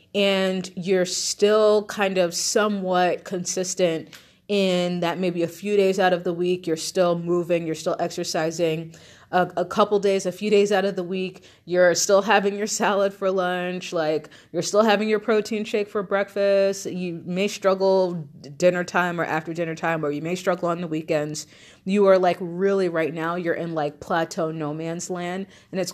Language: English